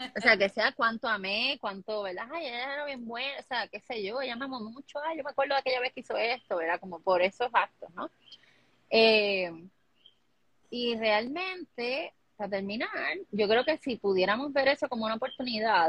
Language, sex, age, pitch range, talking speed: Spanish, female, 20-39, 195-265 Hz, 195 wpm